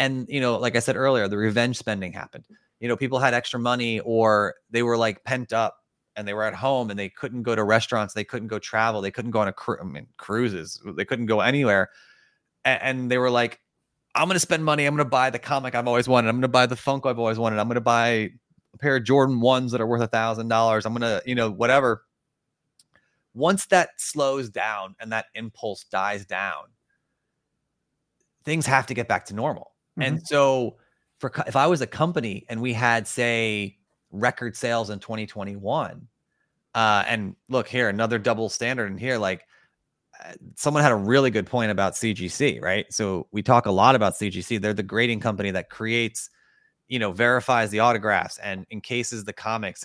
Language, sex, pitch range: English, male, 105-130 Hz